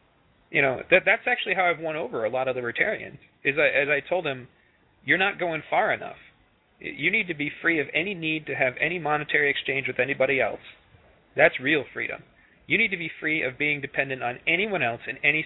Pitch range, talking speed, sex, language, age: 125-160 Hz, 210 wpm, male, English, 30-49